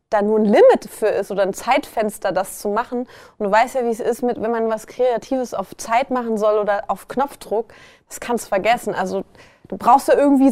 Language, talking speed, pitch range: German, 230 wpm, 215-260 Hz